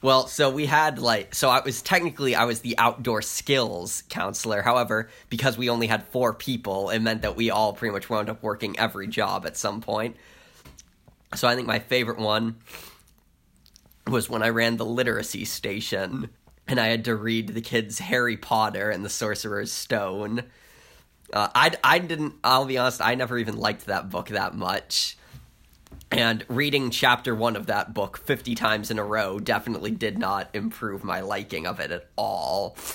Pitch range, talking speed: 105-125 Hz, 180 wpm